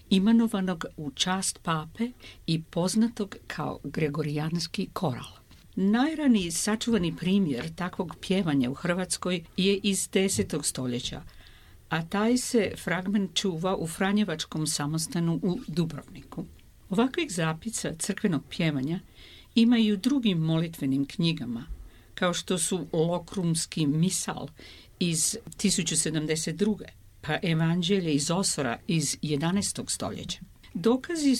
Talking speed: 100 wpm